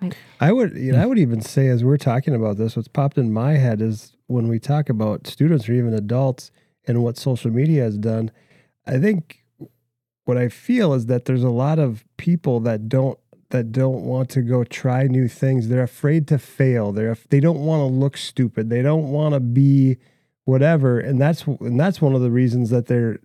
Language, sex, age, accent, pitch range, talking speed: English, male, 30-49, American, 125-165 Hz, 210 wpm